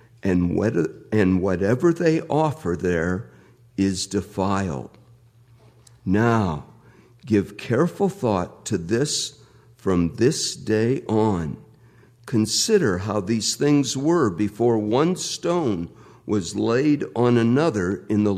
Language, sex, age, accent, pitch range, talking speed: English, male, 60-79, American, 100-140 Hz, 105 wpm